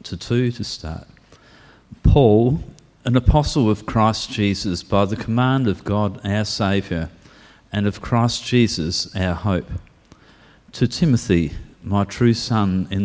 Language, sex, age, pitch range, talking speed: English, male, 50-69, 95-125 Hz, 135 wpm